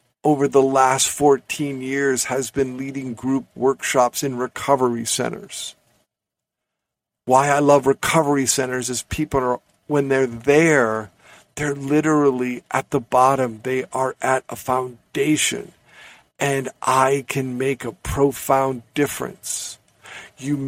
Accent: American